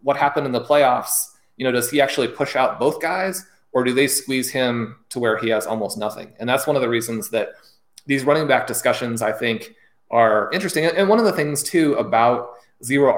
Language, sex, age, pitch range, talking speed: English, male, 30-49, 115-140 Hz, 220 wpm